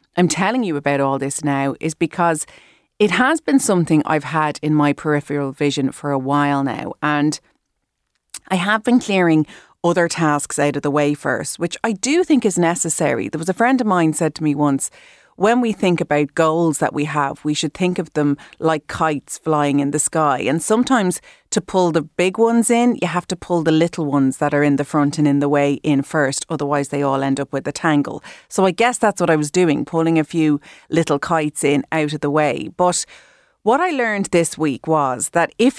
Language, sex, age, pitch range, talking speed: English, female, 30-49, 150-185 Hz, 220 wpm